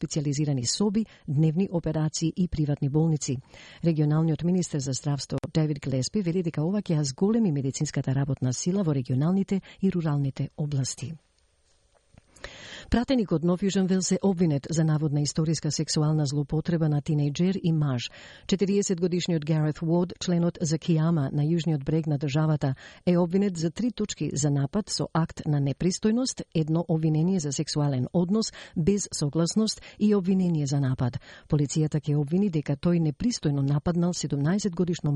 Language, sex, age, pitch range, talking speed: Bulgarian, female, 50-69, 145-180 Hz, 140 wpm